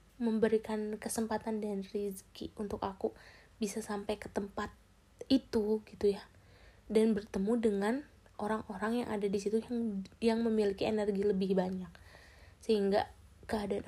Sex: female